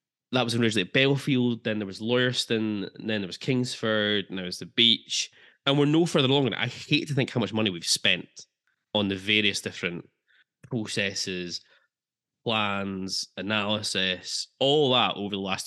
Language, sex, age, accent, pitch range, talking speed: English, male, 20-39, British, 95-115 Hz, 170 wpm